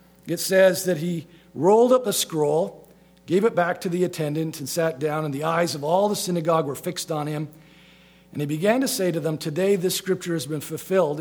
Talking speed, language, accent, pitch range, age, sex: 220 wpm, English, American, 170-200 Hz, 50-69, male